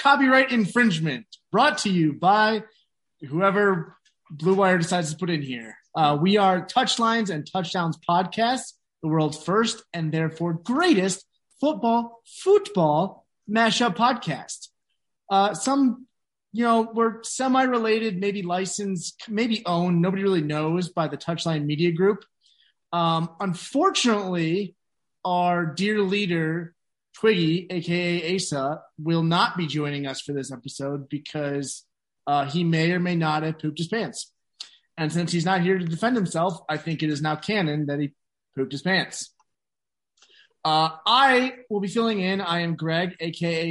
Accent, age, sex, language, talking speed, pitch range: American, 30-49, male, English, 145 wpm, 160-210 Hz